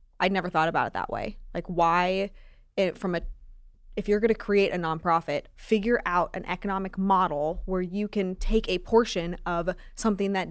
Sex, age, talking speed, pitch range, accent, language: female, 20-39, 190 wpm, 180-215 Hz, American, English